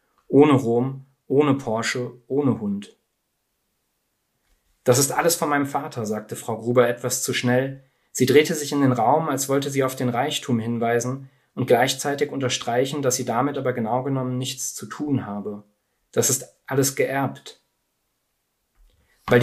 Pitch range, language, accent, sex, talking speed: 120-135 Hz, German, German, male, 150 wpm